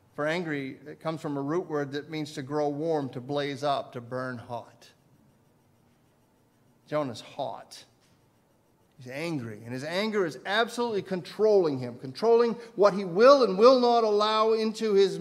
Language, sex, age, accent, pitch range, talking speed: English, male, 50-69, American, 140-180 Hz, 155 wpm